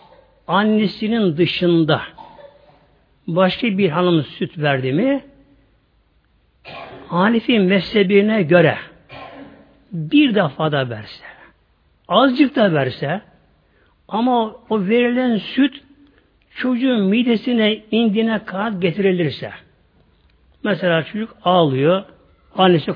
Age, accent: 60-79, native